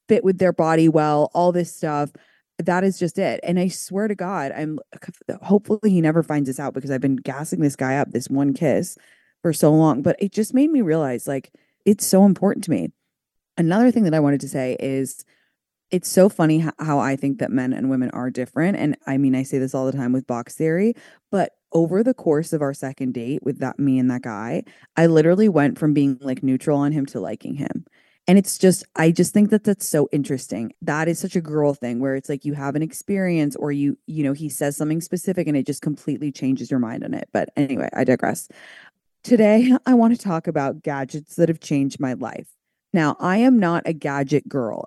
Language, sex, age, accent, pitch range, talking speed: English, female, 20-39, American, 140-180 Hz, 225 wpm